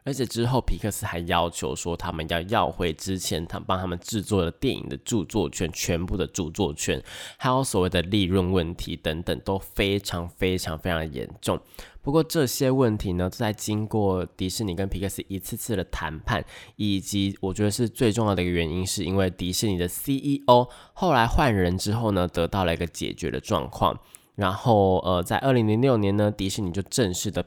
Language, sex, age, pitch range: Chinese, male, 20-39, 90-125 Hz